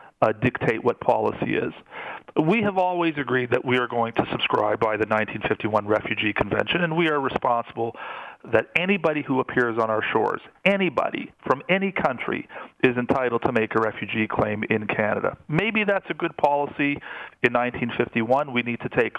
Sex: male